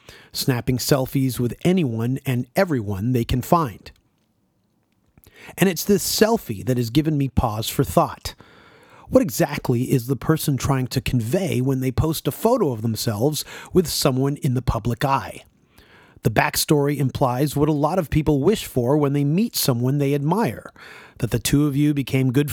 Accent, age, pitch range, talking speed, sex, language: American, 40-59, 130-165 Hz, 170 wpm, male, English